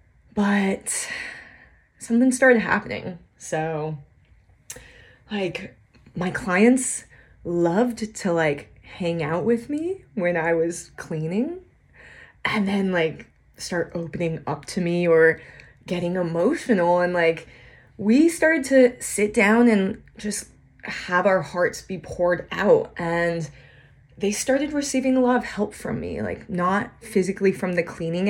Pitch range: 170-225 Hz